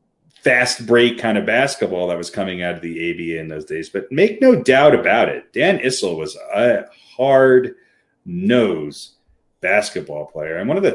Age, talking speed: 30-49, 180 wpm